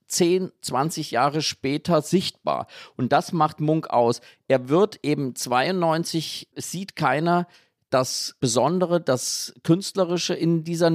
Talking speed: 120 wpm